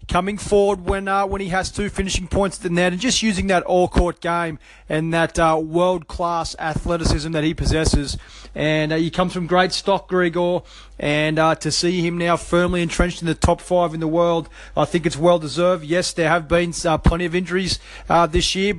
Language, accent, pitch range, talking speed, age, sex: English, Australian, 145-175 Hz, 210 wpm, 30-49, male